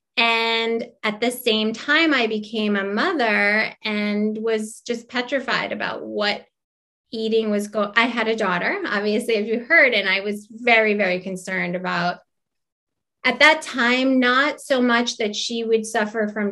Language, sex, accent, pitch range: English, female, American, 195-230 Hz